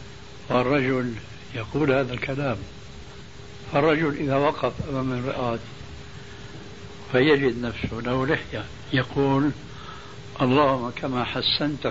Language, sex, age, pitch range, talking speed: Arabic, male, 70-89, 125-145 Hz, 85 wpm